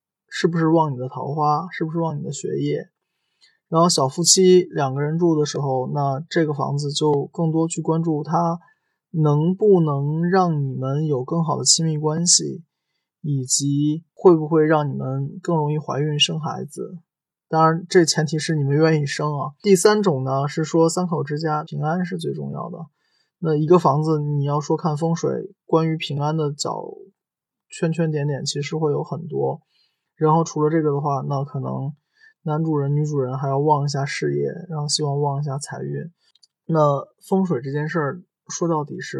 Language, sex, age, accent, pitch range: Chinese, male, 20-39, native, 145-175 Hz